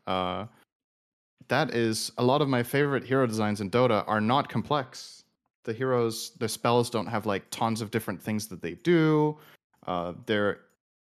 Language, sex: English, male